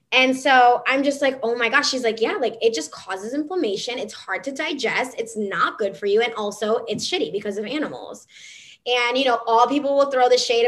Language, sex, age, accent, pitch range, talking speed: English, female, 10-29, American, 215-270 Hz, 230 wpm